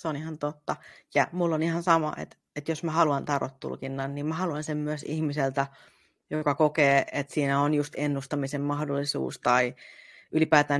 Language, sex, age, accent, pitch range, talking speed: Finnish, female, 30-49, native, 140-165 Hz, 170 wpm